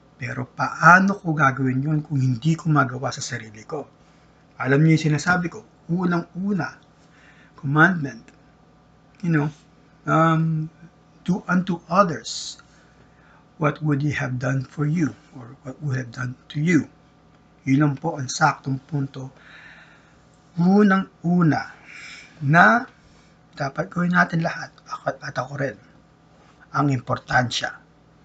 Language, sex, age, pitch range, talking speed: English, male, 50-69, 135-155 Hz, 115 wpm